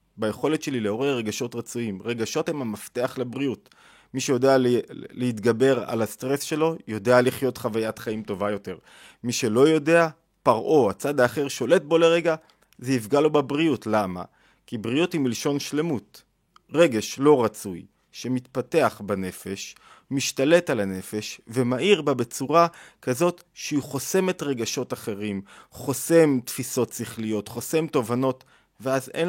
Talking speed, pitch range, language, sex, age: 130 wpm, 115-155 Hz, Hebrew, male, 30-49